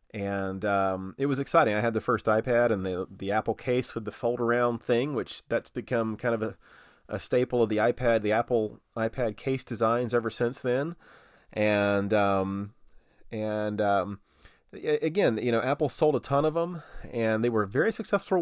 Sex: male